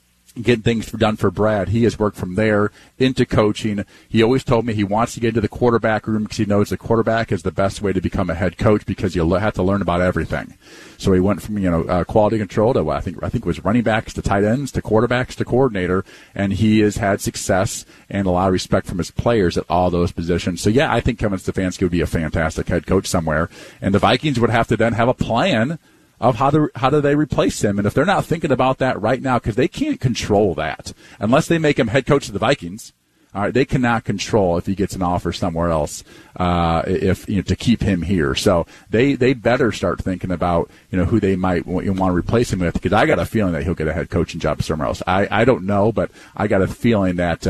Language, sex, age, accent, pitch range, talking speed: English, male, 40-59, American, 90-115 Hz, 255 wpm